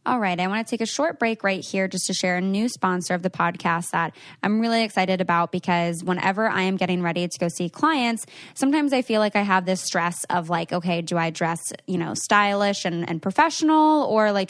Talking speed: 235 wpm